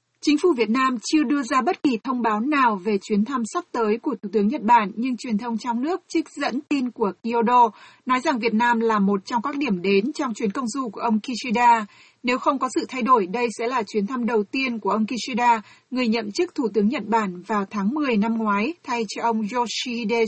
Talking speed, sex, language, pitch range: 240 wpm, female, Vietnamese, 215-260 Hz